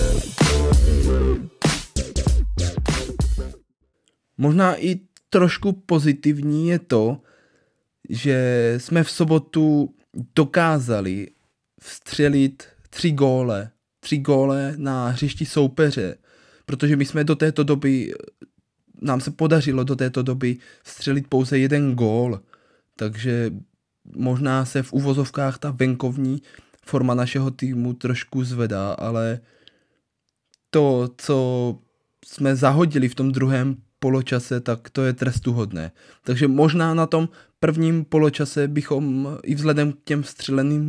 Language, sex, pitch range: Czech, male, 120-150 Hz